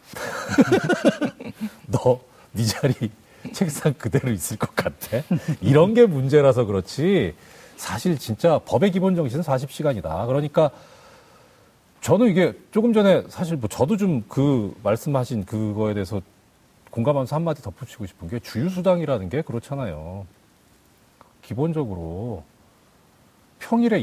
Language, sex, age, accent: Korean, male, 40-59, native